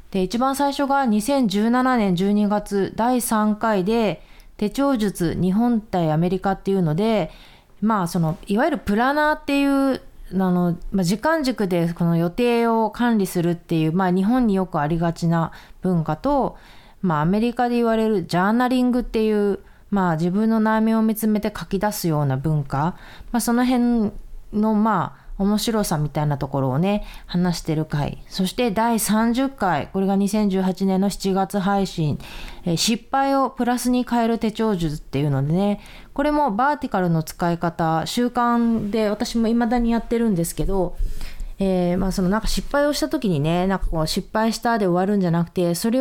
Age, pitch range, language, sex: 20-39, 175-235 Hz, Japanese, female